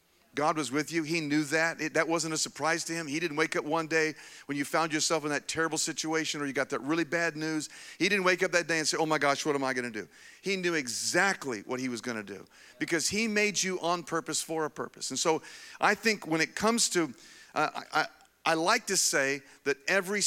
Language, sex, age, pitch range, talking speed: English, male, 50-69, 155-195 Hz, 260 wpm